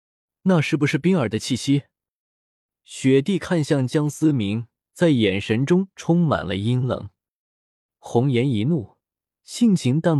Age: 20-39